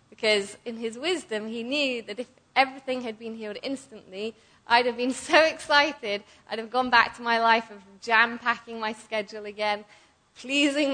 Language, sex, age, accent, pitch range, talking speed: English, female, 20-39, British, 200-250 Hz, 170 wpm